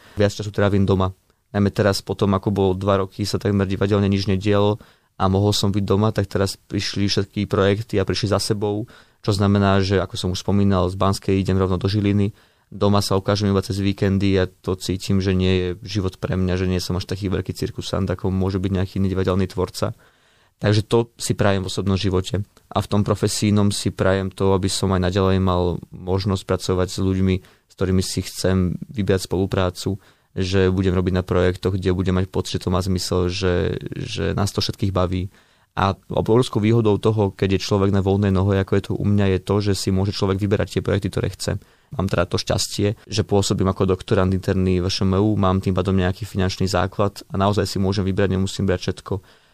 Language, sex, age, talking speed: Slovak, male, 20-39, 210 wpm